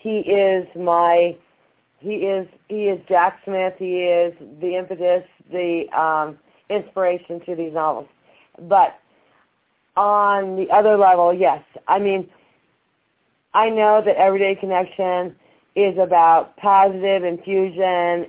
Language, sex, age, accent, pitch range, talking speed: English, female, 40-59, American, 165-195 Hz, 120 wpm